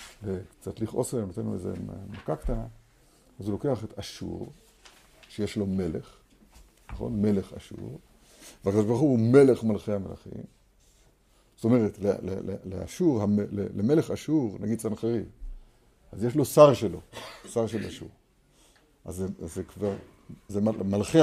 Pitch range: 100-130 Hz